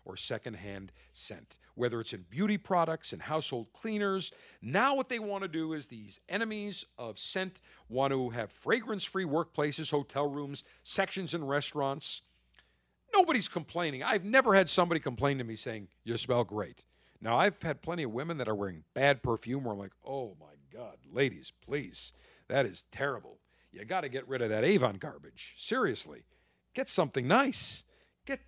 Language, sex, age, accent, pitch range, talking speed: English, male, 50-69, American, 115-190 Hz, 170 wpm